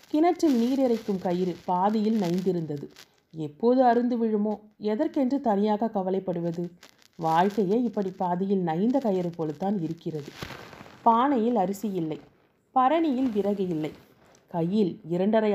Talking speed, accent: 105 wpm, native